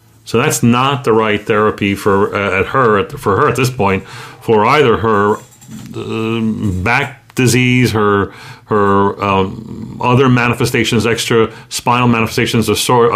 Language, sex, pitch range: English, male, 105-125 Hz